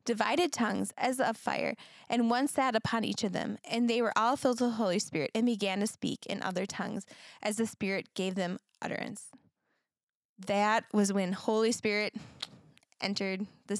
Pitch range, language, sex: 195-235 Hz, English, female